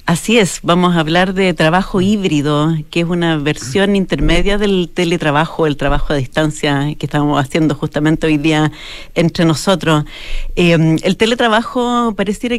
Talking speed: 150 wpm